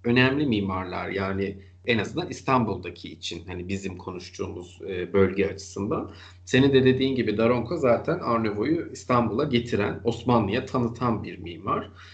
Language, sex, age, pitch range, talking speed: Turkish, male, 40-59, 95-120 Hz, 125 wpm